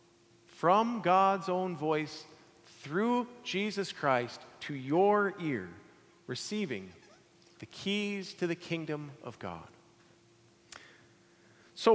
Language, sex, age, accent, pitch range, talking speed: English, male, 40-59, American, 155-210 Hz, 95 wpm